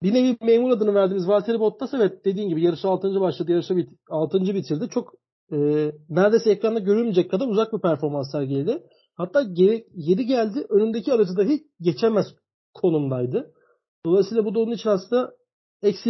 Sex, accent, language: male, native, Turkish